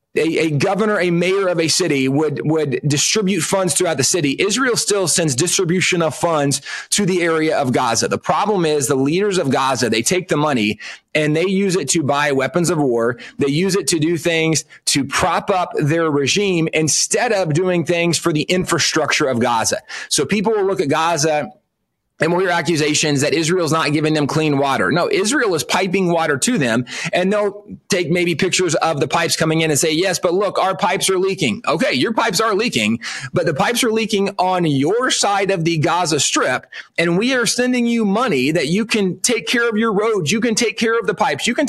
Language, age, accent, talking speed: English, 30-49, American, 215 wpm